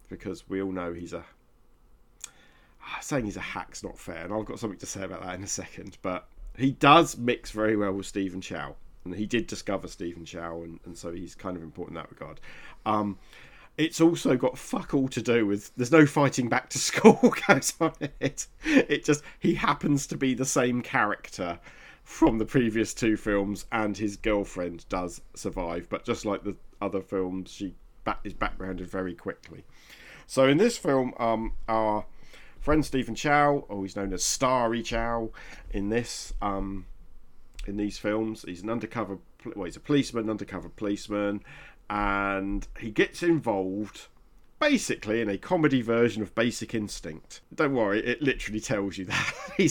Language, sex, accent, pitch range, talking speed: English, male, British, 95-135 Hz, 175 wpm